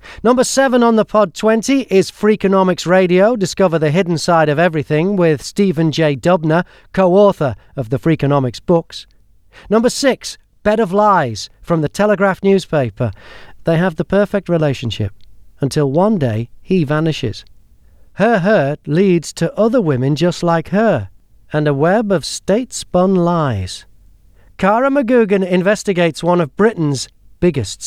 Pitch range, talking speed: 145-205 Hz, 140 wpm